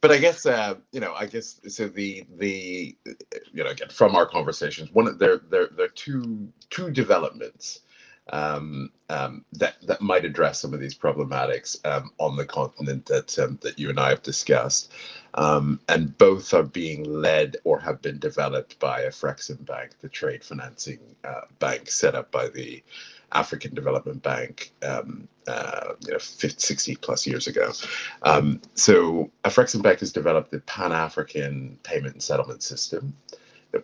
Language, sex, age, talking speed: Italian, male, 40-59, 165 wpm